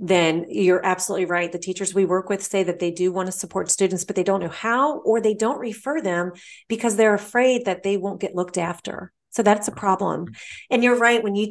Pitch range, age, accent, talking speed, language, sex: 175-220 Hz, 30-49, American, 235 wpm, English, female